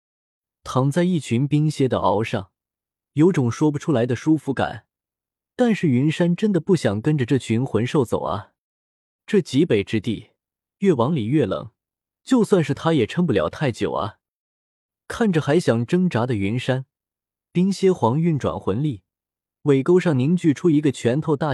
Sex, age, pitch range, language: male, 20-39, 115-155 Hz, Chinese